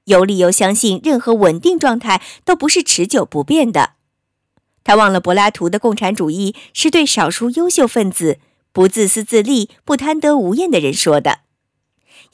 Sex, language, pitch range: male, Chinese, 180-270 Hz